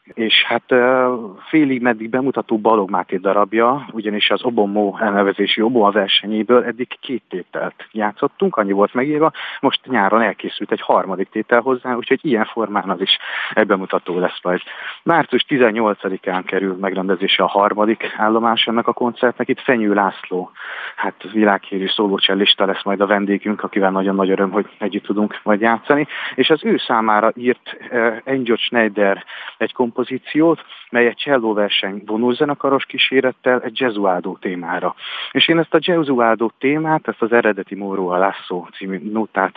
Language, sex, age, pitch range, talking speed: Hungarian, male, 30-49, 100-125 Hz, 150 wpm